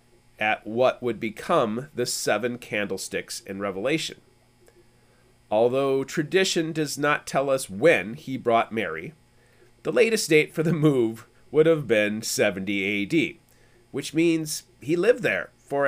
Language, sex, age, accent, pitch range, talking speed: English, male, 30-49, American, 120-170 Hz, 135 wpm